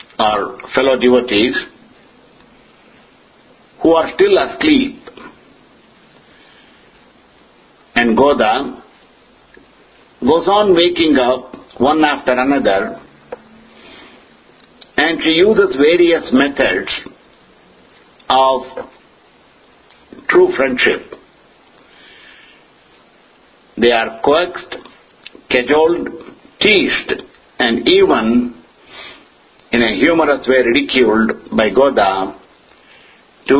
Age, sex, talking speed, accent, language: 60-79, male, 70 wpm, Indian, English